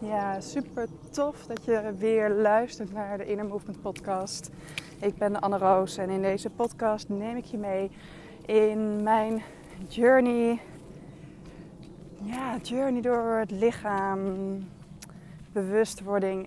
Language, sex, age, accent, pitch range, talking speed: Dutch, female, 20-39, Dutch, 180-225 Hz, 125 wpm